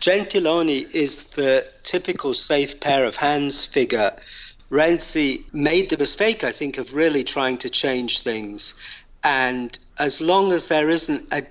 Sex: male